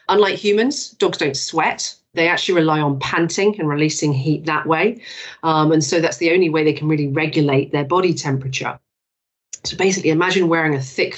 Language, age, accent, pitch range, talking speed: English, 40-59, British, 145-175 Hz, 190 wpm